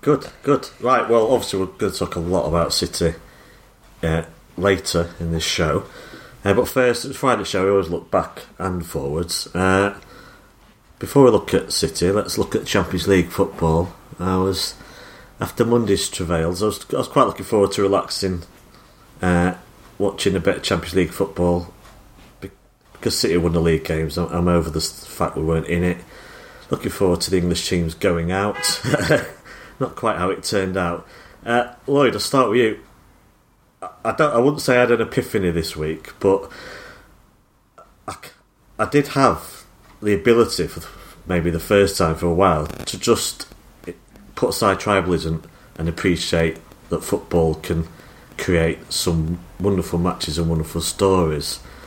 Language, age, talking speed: English, 40-59, 165 wpm